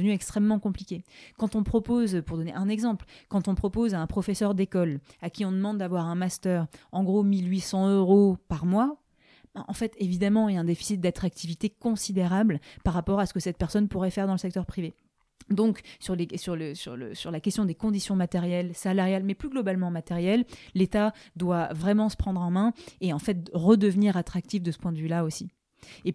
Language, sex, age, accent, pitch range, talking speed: French, female, 30-49, French, 175-210 Hz, 195 wpm